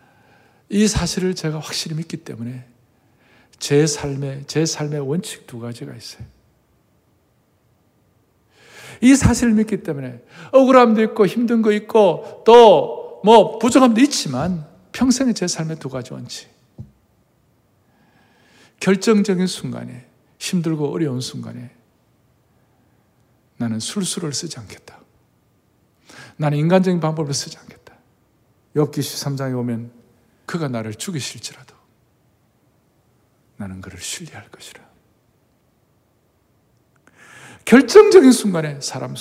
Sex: male